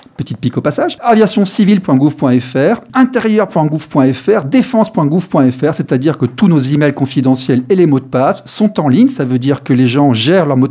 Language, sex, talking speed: French, male, 175 wpm